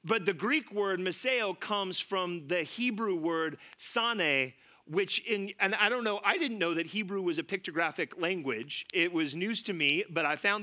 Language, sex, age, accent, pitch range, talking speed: English, male, 30-49, American, 170-220 Hz, 190 wpm